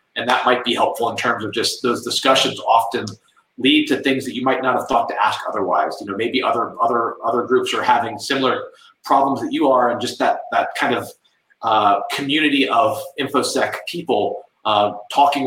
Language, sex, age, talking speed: English, male, 30-49, 200 wpm